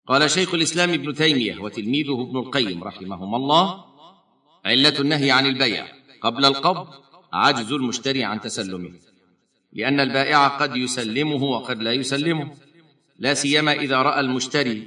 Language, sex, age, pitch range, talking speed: Arabic, male, 50-69, 115-140 Hz, 130 wpm